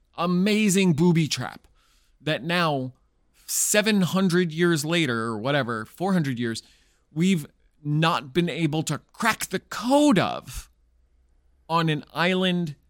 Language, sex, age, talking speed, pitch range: English, male, 30-49, 110 wpm, 120-180 Hz